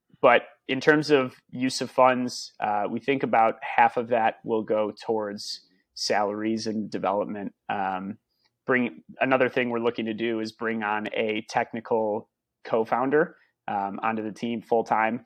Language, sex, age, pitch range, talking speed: English, male, 30-49, 110-120 Hz, 155 wpm